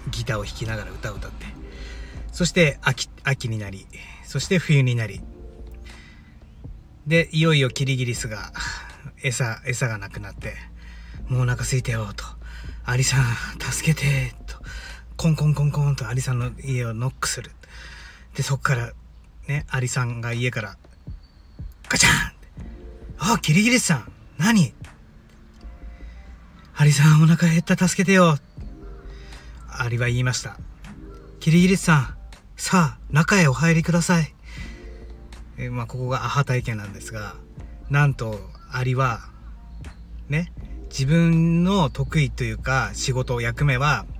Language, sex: Japanese, male